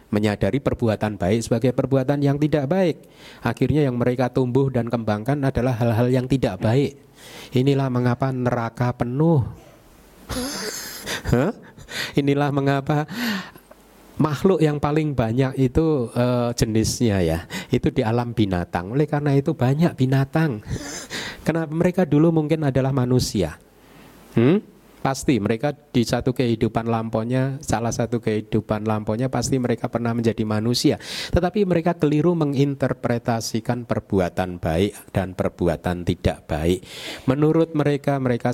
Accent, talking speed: native, 120 wpm